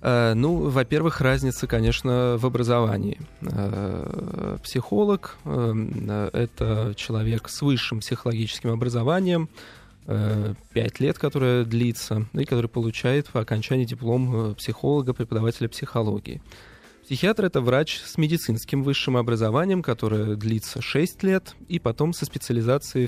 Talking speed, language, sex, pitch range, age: 110 wpm, Russian, male, 110-140 Hz, 20-39